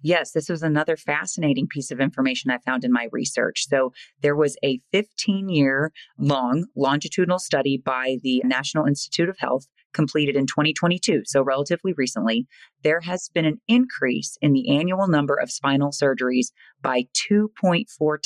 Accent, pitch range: American, 135-165 Hz